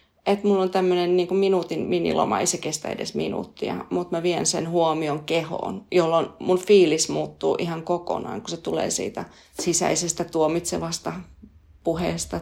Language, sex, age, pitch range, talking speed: Finnish, female, 30-49, 165-200 Hz, 145 wpm